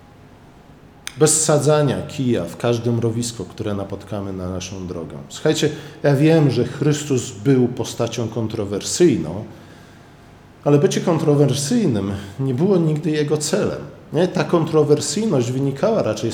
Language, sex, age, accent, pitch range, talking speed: Polish, male, 40-59, native, 115-150 Hz, 115 wpm